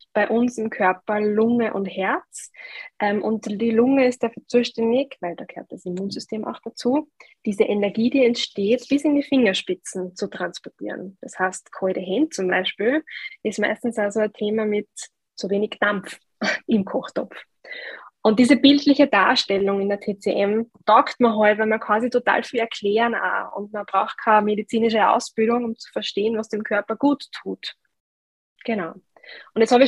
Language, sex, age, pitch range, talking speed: German, female, 20-39, 195-235 Hz, 165 wpm